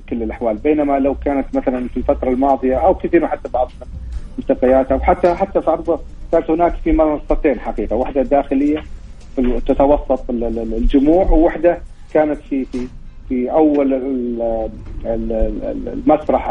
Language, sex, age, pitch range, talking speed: Arabic, male, 40-59, 125-145 Hz, 125 wpm